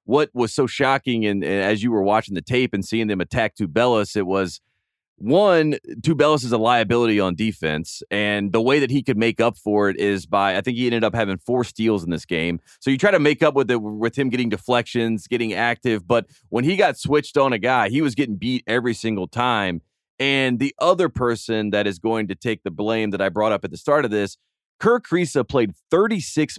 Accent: American